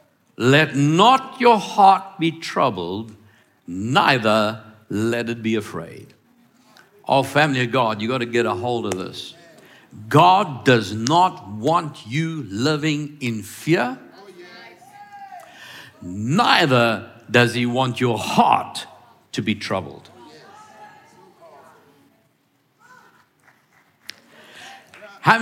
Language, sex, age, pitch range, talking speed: English, male, 60-79, 120-180 Hz, 95 wpm